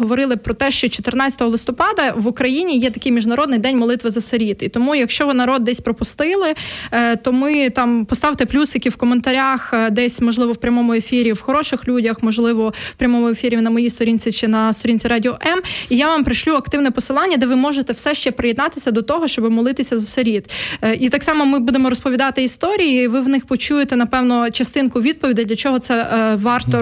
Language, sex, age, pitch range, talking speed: Ukrainian, female, 20-39, 230-260 Hz, 190 wpm